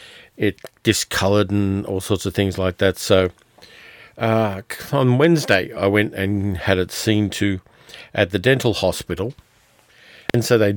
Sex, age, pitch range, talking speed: male, 50-69, 95-120 Hz, 150 wpm